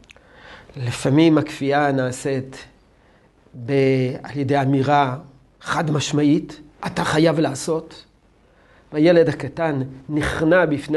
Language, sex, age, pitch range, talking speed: Hebrew, male, 50-69, 140-190 Hz, 90 wpm